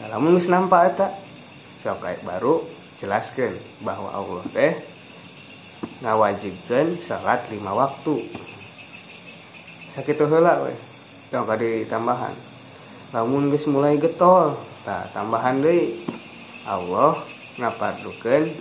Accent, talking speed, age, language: native, 105 wpm, 20-39, Indonesian